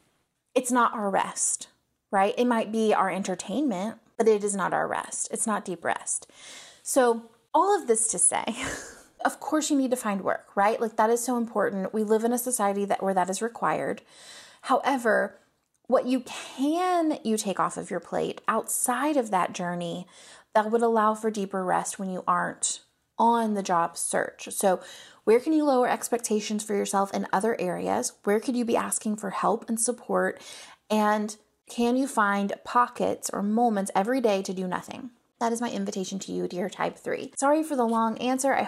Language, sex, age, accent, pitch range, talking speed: English, female, 30-49, American, 205-260 Hz, 190 wpm